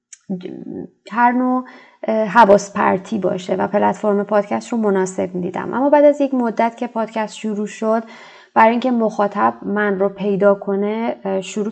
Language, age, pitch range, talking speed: Persian, 20-39, 195-220 Hz, 140 wpm